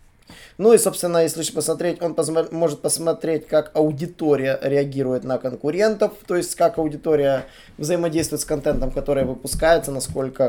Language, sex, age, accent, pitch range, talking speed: Russian, male, 20-39, native, 140-170 Hz, 135 wpm